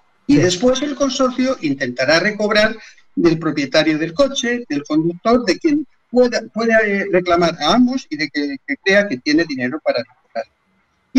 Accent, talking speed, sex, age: Spanish, 160 wpm, male, 50-69